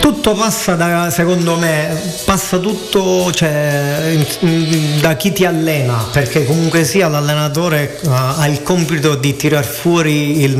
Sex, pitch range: male, 135-160 Hz